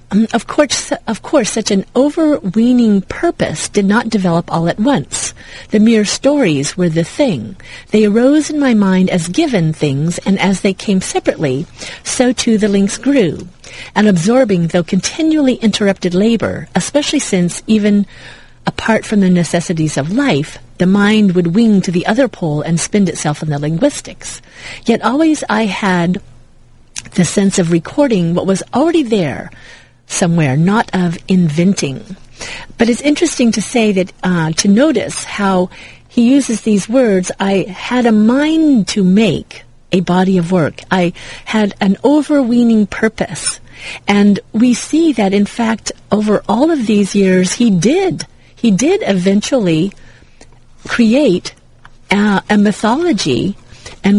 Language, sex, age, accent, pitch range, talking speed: English, female, 40-59, American, 180-235 Hz, 150 wpm